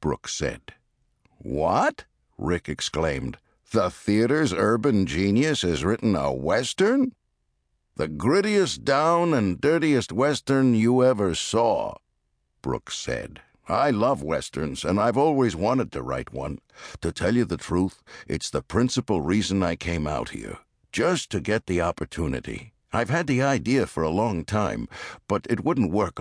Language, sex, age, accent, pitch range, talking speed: English, male, 60-79, American, 80-130 Hz, 145 wpm